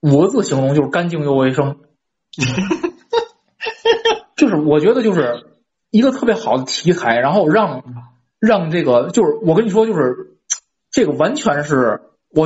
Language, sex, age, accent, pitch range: Chinese, male, 20-39, native, 140-220 Hz